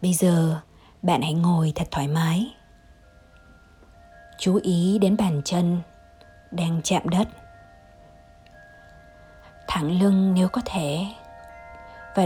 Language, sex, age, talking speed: Vietnamese, female, 20-39, 110 wpm